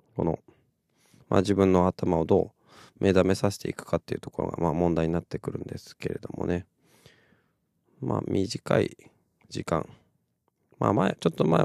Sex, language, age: male, Japanese, 20-39